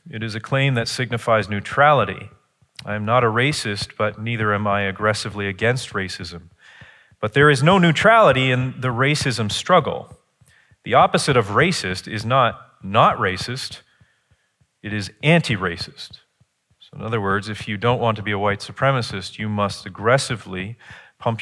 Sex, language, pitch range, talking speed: male, English, 105-135 Hz, 155 wpm